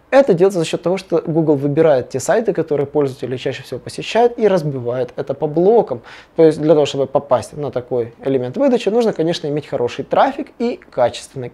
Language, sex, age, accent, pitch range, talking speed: Russian, male, 20-39, native, 130-175 Hz, 190 wpm